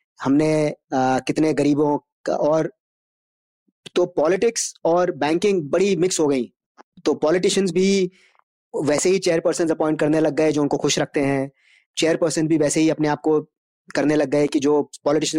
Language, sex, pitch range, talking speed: Hindi, male, 145-175 Hz, 165 wpm